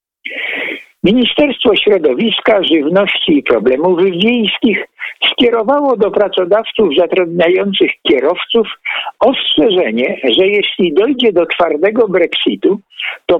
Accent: native